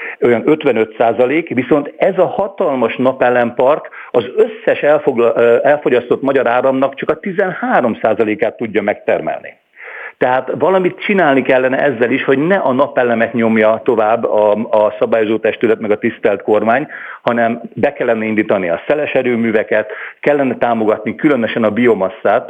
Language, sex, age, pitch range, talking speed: Hungarian, male, 50-69, 110-145 Hz, 135 wpm